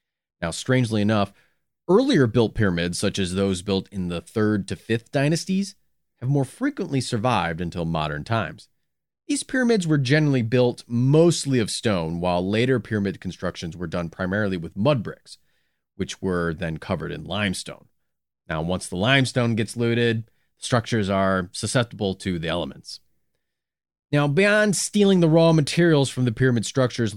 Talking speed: 150 wpm